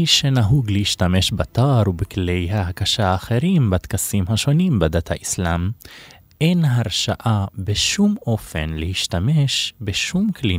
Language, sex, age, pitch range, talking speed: Hebrew, male, 20-39, 95-130 Hz, 95 wpm